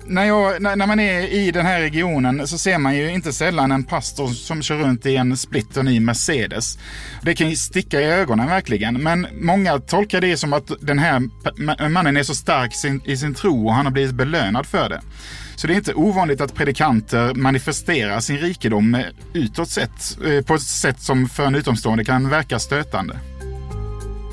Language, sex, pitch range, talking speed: Swedish, male, 120-155 Hz, 190 wpm